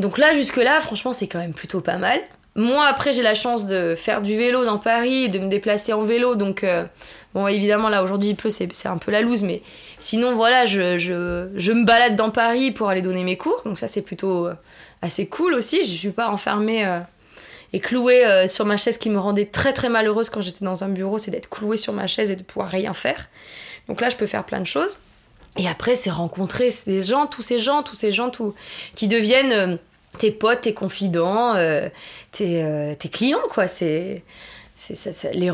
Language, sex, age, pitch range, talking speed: French, female, 20-39, 185-240 Hz, 220 wpm